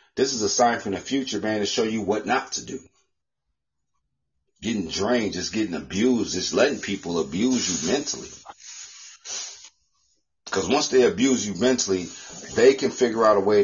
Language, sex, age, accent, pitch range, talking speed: English, male, 40-59, American, 100-130 Hz, 165 wpm